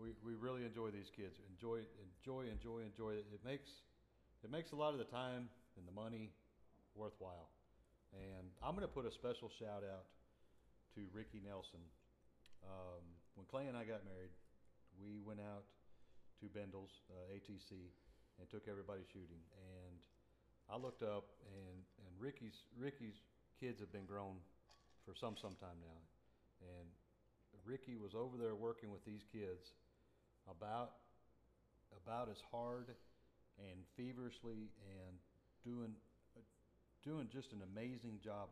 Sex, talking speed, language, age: male, 145 wpm, English, 40-59